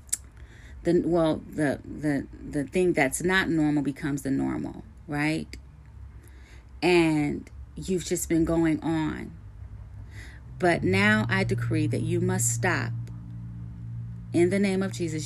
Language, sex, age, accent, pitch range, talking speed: English, female, 30-49, American, 105-170 Hz, 125 wpm